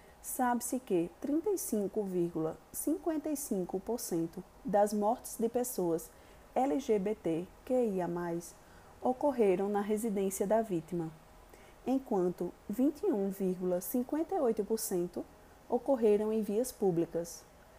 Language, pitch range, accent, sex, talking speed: Portuguese, 185-255 Hz, Brazilian, female, 65 wpm